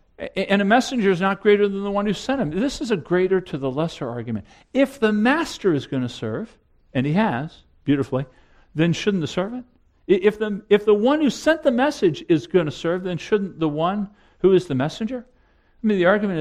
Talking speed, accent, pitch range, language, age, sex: 220 wpm, American, 165-240 Hz, English, 50-69, male